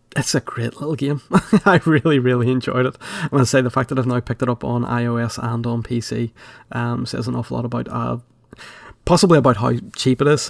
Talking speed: 230 wpm